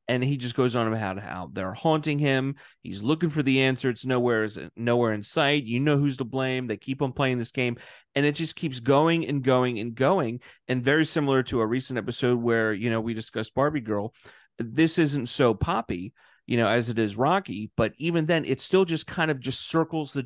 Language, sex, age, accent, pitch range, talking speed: English, male, 30-49, American, 120-155 Hz, 220 wpm